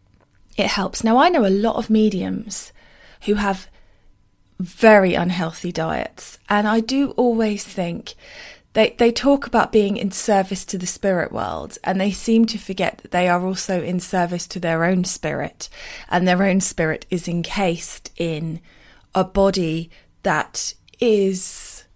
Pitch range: 175-215 Hz